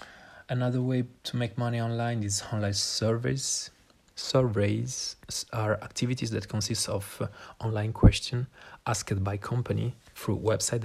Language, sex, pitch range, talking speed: Italian, male, 100-115 Hz, 125 wpm